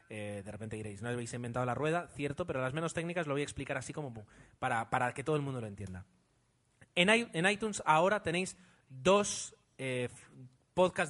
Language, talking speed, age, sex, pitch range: Spanish, 195 wpm, 30-49, male, 125-175 Hz